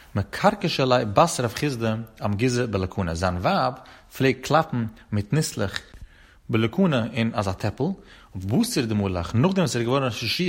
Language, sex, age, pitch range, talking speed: Hebrew, male, 30-49, 105-135 Hz, 130 wpm